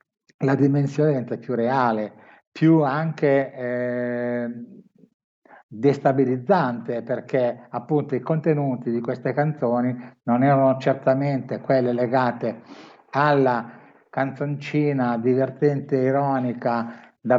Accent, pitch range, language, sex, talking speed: native, 120-140 Hz, Italian, male, 95 wpm